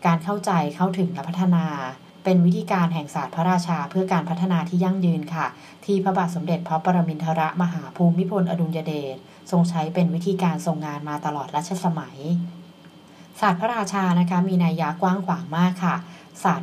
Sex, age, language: female, 20-39, Thai